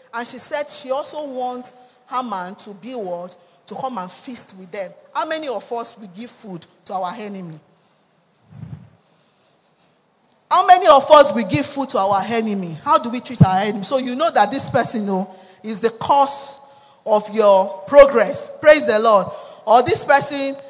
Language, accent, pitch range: English, Nigerian, 190-265 Hz